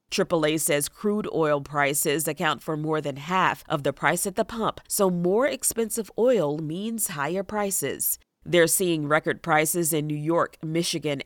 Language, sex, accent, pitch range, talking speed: English, female, American, 155-200 Hz, 165 wpm